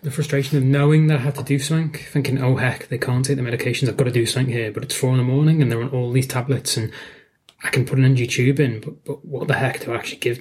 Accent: British